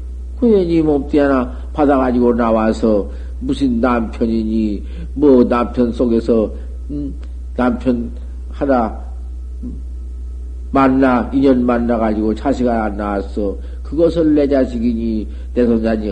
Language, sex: Korean, male